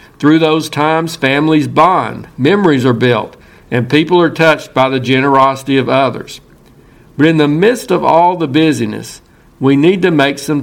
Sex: male